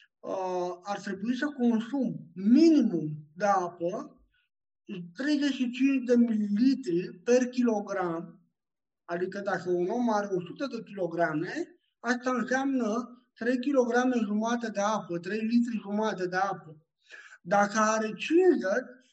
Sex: male